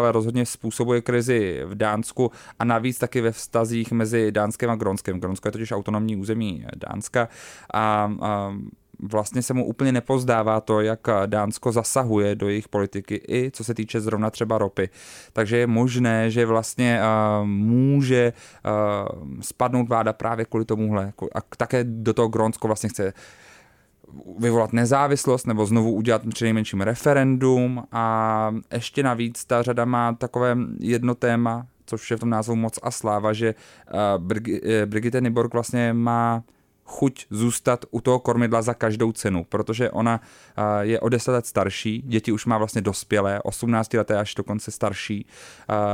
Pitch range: 110-120 Hz